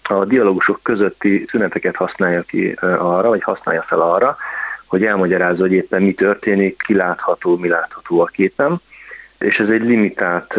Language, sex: Hungarian, male